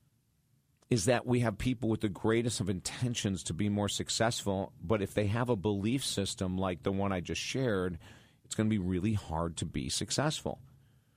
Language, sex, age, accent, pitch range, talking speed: English, male, 40-59, American, 100-125 Hz, 195 wpm